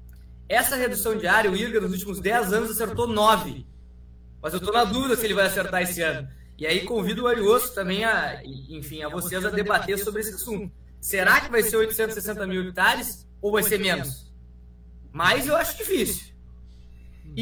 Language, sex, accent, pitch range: Portuguese, male, Brazilian, 145-215 Hz